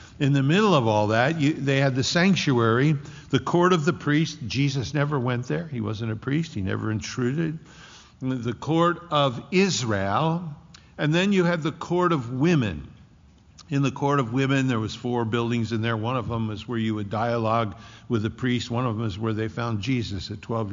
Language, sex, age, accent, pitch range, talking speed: English, male, 60-79, American, 115-140 Hz, 205 wpm